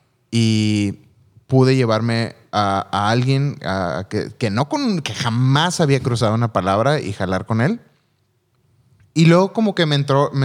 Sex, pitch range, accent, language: male, 115-145 Hz, Mexican, Spanish